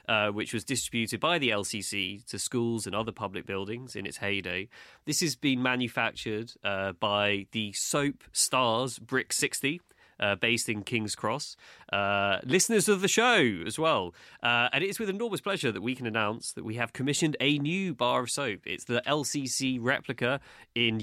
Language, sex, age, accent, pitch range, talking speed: English, male, 20-39, British, 105-135 Hz, 180 wpm